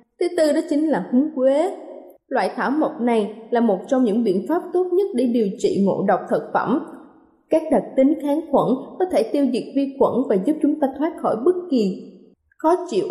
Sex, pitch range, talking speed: female, 235-330 Hz, 215 wpm